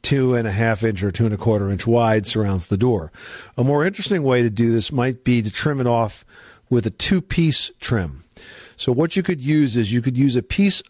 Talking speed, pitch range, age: 195 wpm, 115-145 Hz, 50-69